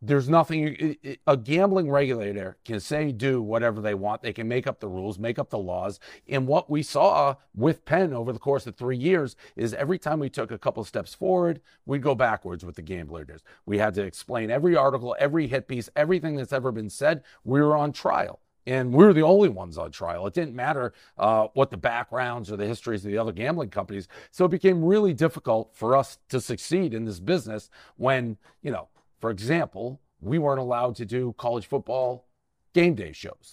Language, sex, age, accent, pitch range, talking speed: English, male, 40-59, American, 110-150 Hz, 210 wpm